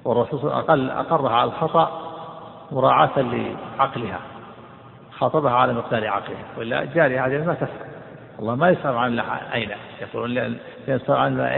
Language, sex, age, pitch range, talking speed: Arabic, male, 50-69, 125-160 Hz, 130 wpm